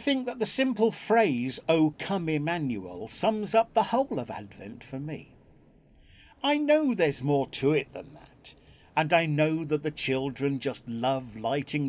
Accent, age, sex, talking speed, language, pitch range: British, 50-69, male, 170 wpm, English, 130-200 Hz